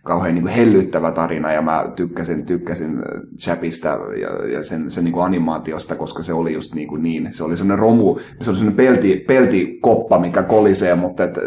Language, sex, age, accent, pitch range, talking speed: Finnish, male, 30-49, native, 85-95 Hz, 195 wpm